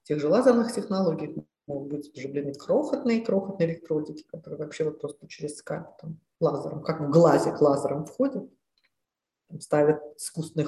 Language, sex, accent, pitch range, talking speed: Russian, female, native, 150-185 Hz, 135 wpm